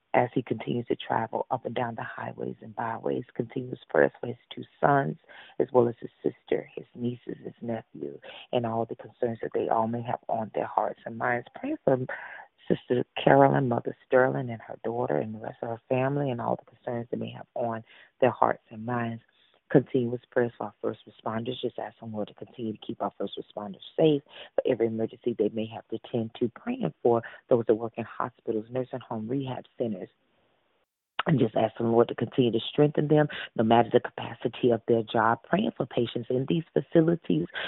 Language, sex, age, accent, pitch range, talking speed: English, female, 40-59, American, 115-130 Hz, 205 wpm